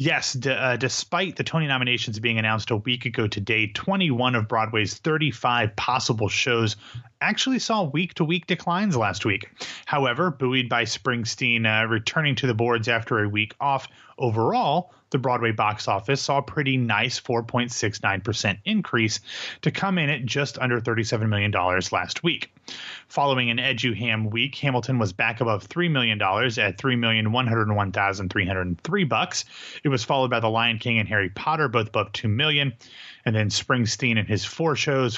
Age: 30-49